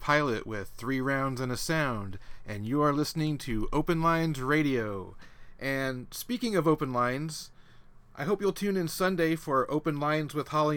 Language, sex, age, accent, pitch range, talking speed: English, male, 30-49, American, 120-145 Hz, 175 wpm